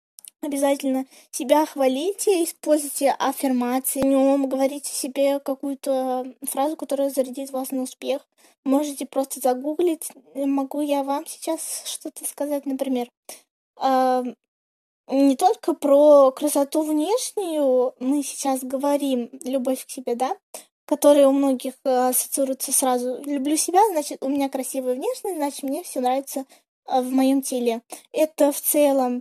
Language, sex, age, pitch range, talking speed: Russian, female, 20-39, 265-300 Hz, 125 wpm